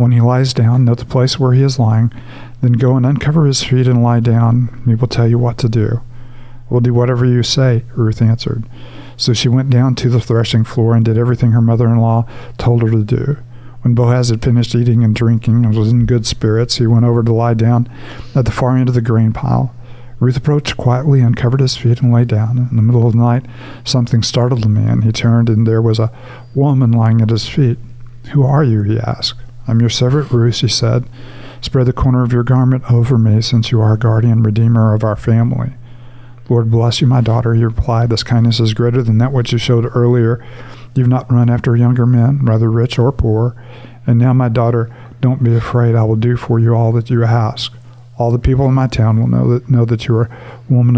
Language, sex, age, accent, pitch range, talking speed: English, male, 50-69, American, 115-125 Hz, 225 wpm